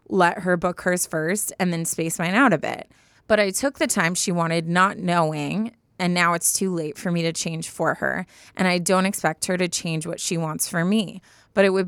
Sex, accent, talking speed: female, American, 235 wpm